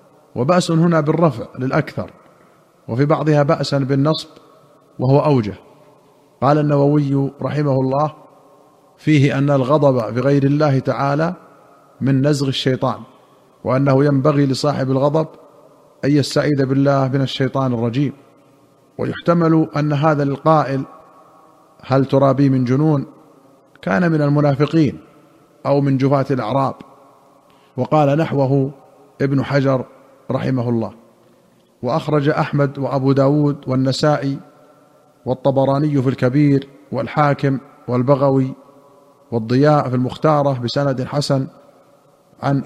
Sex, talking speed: male, 100 wpm